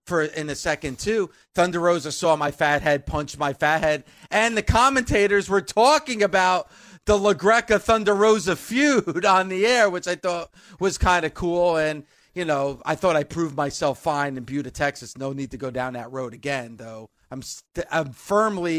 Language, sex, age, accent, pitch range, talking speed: English, male, 40-59, American, 150-195 Hz, 195 wpm